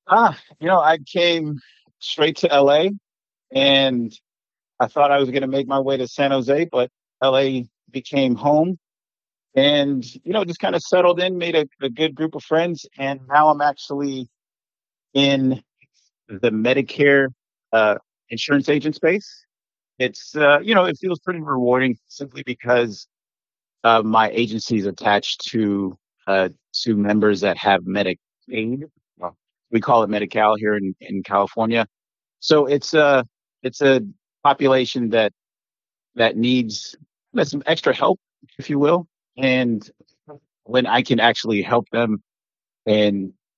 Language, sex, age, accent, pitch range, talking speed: English, male, 50-69, American, 115-140 Hz, 145 wpm